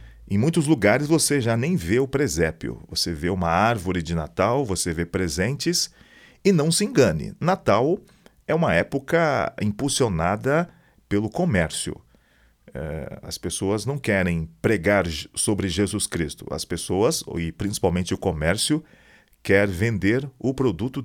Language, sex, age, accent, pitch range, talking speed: Portuguese, male, 40-59, Brazilian, 85-115 Hz, 135 wpm